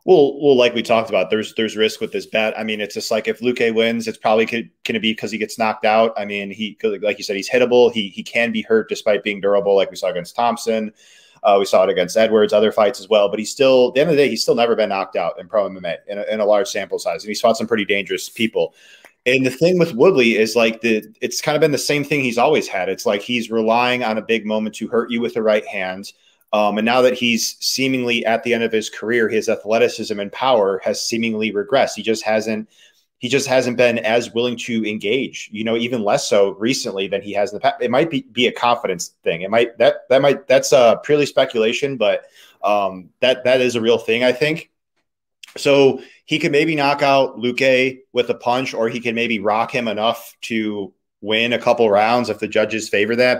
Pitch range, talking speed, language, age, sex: 110-125 Hz, 250 wpm, English, 30-49, male